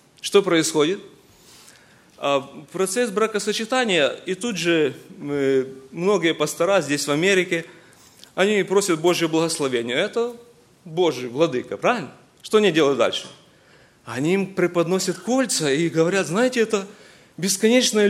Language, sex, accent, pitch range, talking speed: Russian, male, native, 160-215 Hz, 110 wpm